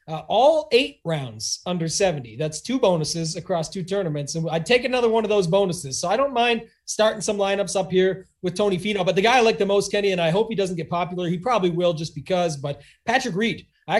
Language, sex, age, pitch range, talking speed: English, male, 30-49, 180-235 Hz, 240 wpm